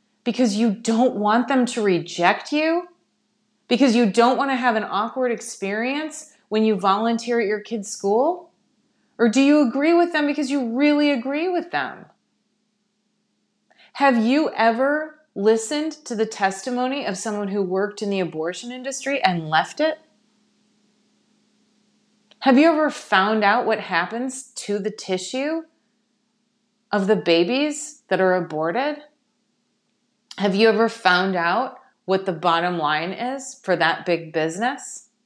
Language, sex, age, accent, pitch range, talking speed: English, female, 30-49, American, 190-240 Hz, 145 wpm